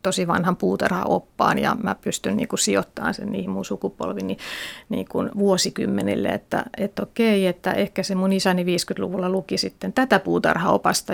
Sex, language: female, Finnish